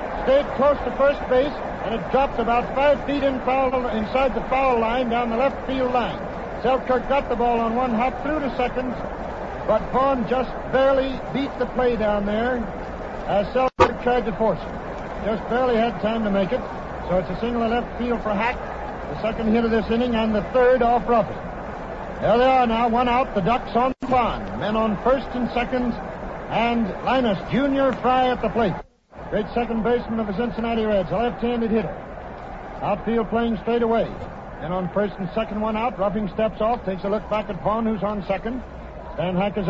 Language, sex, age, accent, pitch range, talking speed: English, male, 60-79, American, 195-245 Hz, 195 wpm